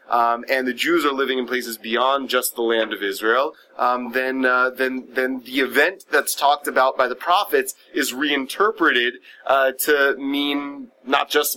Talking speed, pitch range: 175 wpm, 125-155 Hz